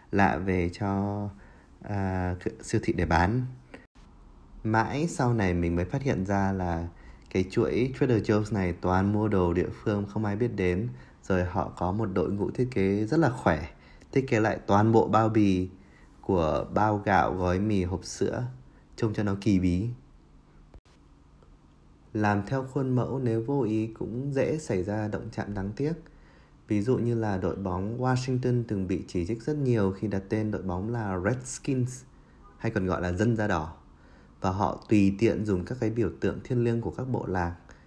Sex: male